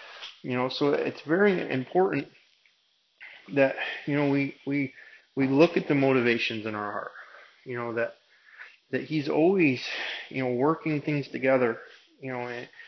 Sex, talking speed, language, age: male, 155 wpm, English, 30-49